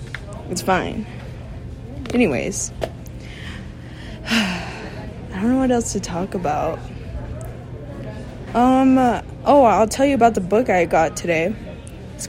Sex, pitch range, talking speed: female, 180-230 Hz, 110 wpm